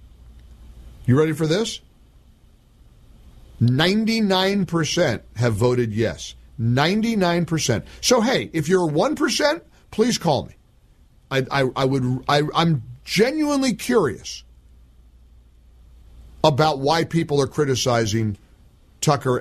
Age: 50-69